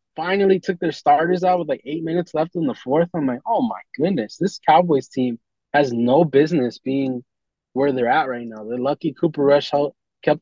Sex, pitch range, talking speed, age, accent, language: male, 125-165 Hz, 205 wpm, 20-39, American, English